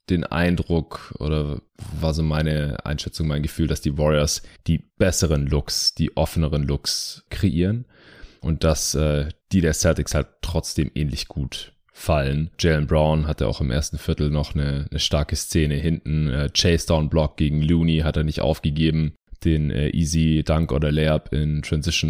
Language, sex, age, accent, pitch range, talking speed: German, male, 20-39, German, 75-90 Hz, 160 wpm